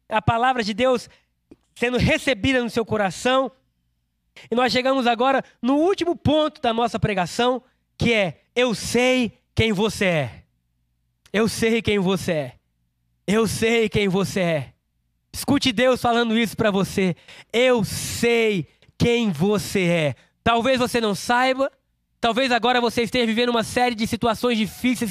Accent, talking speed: Brazilian, 145 wpm